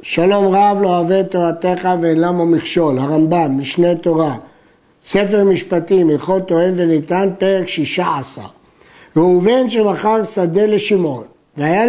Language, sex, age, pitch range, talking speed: Hebrew, male, 50-69, 175-225 Hz, 120 wpm